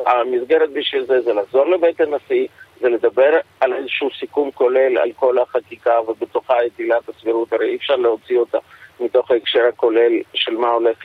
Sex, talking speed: male, 165 wpm